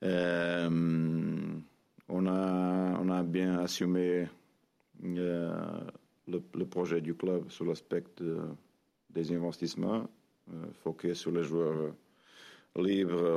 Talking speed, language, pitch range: 105 wpm, French, 85-95 Hz